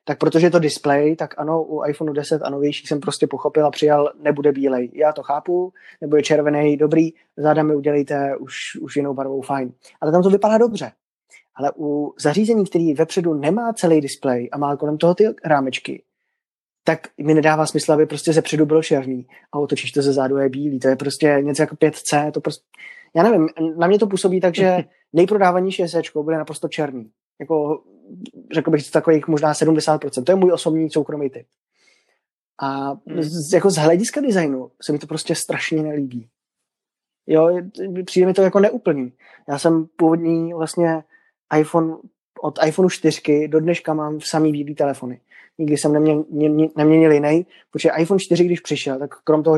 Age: 20-39